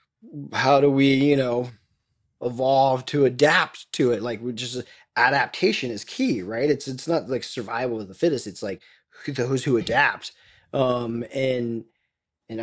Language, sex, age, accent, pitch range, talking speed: English, male, 20-39, American, 120-155 Hz, 155 wpm